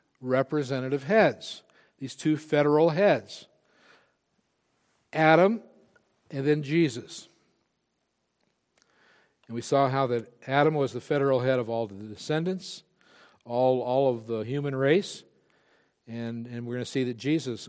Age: 60-79